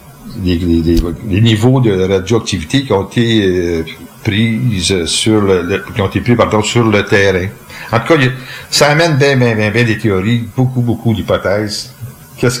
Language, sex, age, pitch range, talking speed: French, male, 50-69, 100-125 Hz, 175 wpm